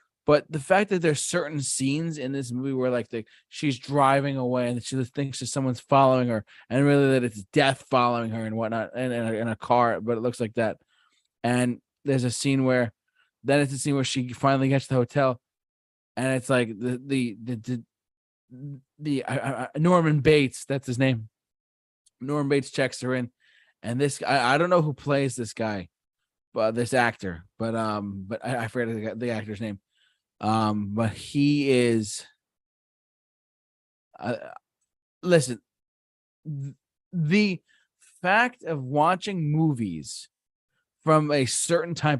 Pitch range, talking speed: 115-145 Hz, 165 wpm